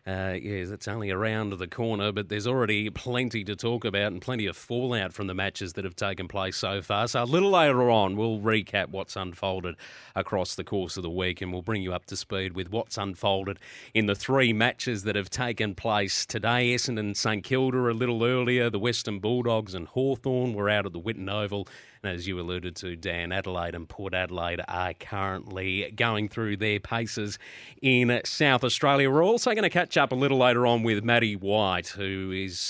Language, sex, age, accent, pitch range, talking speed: English, male, 30-49, Australian, 100-130 Hz, 205 wpm